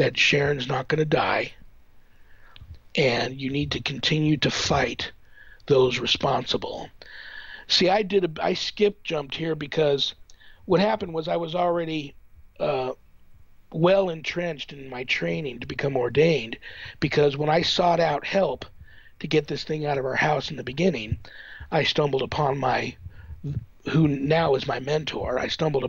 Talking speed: 155 wpm